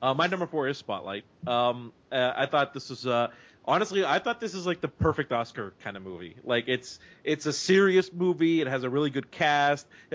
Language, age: English, 30-49